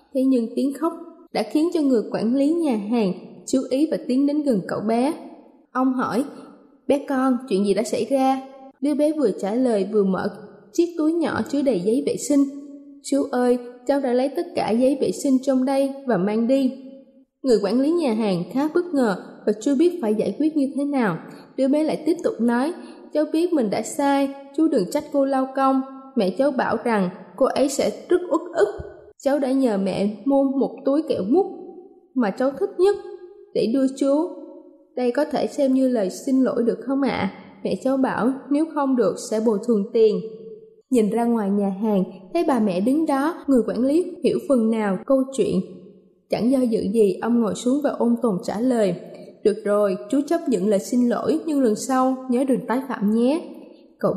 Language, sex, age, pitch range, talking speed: Vietnamese, female, 20-39, 220-285 Hz, 210 wpm